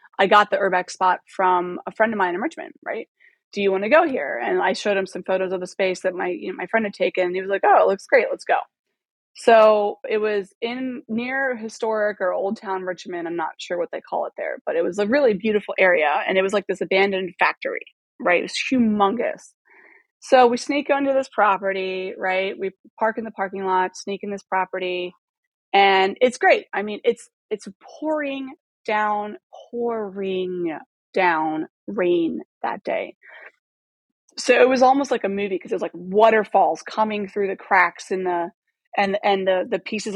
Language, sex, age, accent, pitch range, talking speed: English, female, 20-39, American, 190-245 Hz, 200 wpm